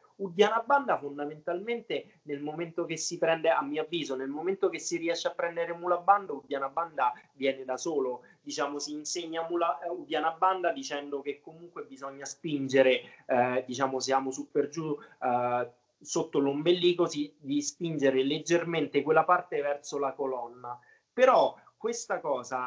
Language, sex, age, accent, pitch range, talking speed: Italian, male, 30-49, native, 135-170 Hz, 150 wpm